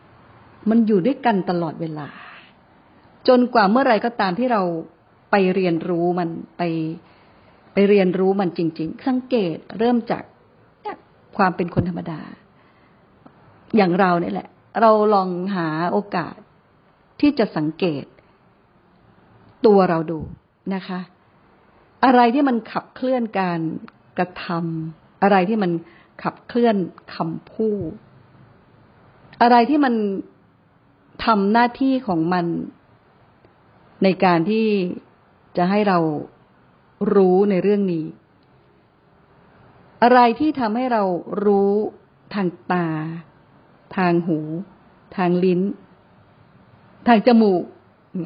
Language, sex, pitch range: Thai, female, 170-220 Hz